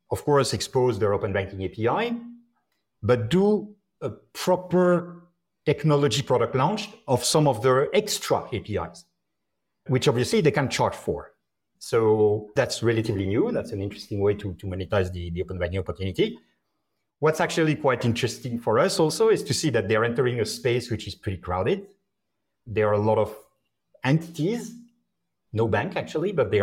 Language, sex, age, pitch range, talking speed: English, male, 50-69, 105-150 Hz, 160 wpm